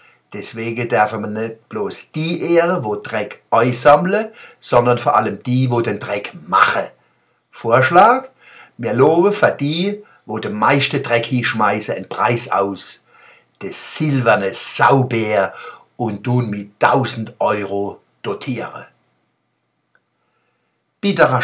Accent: German